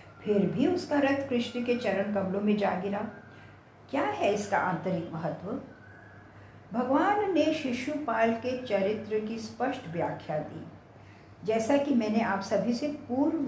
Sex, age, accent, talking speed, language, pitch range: female, 60-79, Indian, 140 wpm, English, 175-270 Hz